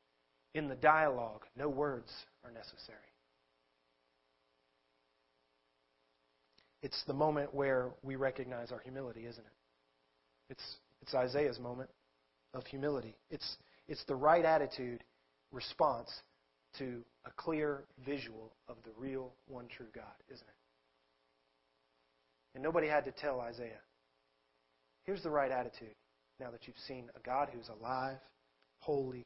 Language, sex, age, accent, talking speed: English, male, 40-59, American, 125 wpm